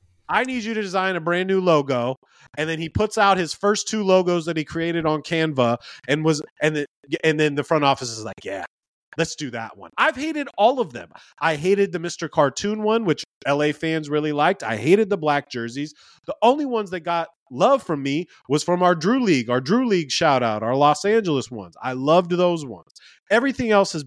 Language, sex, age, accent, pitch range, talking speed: English, male, 30-49, American, 140-185 Hz, 220 wpm